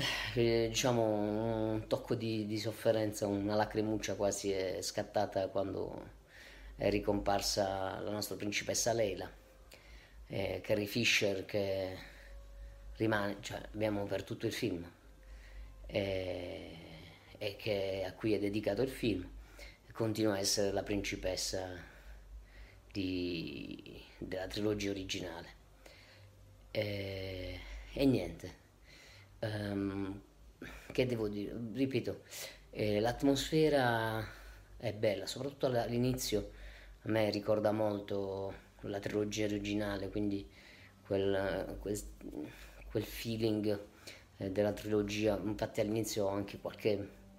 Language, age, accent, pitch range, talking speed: Italian, 30-49, native, 95-110 Hz, 105 wpm